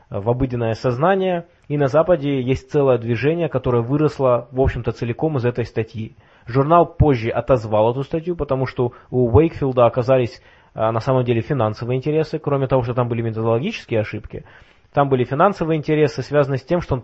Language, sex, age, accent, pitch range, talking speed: Russian, male, 20-39, native, 115-140 Hz, 170 wpm